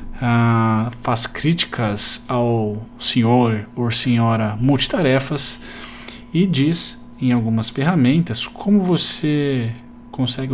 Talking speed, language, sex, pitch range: 90 wpm, Portuguese, male, 115-140 Hz